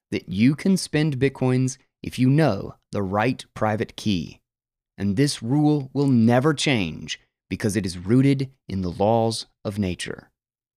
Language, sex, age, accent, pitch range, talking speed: English, male, 30-49, American, 105-135 Hz, 150 wpm